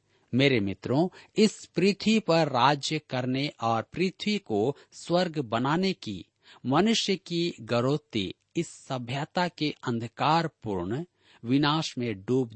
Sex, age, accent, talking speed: male, 50-69, native, 110 wpm